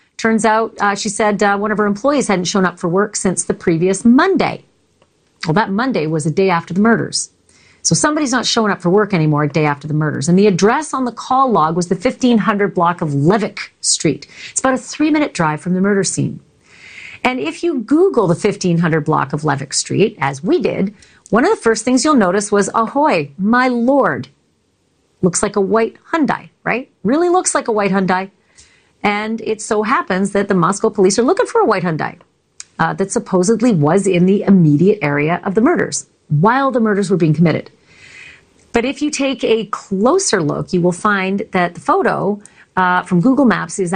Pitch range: 175-230 Hz